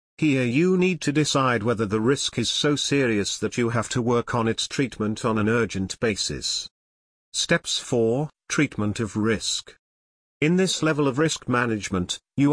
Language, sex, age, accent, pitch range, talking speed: English, male, 40-59, British, 110-140 Hz, 170 wpm